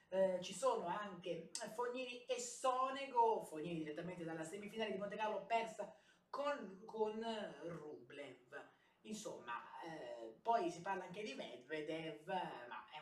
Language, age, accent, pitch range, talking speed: Italian, 30-49, native, 175-230 Hz, 130 wpm